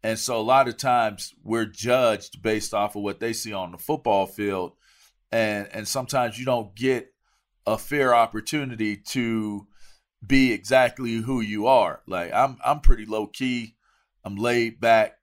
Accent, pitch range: American, 105-130 Hz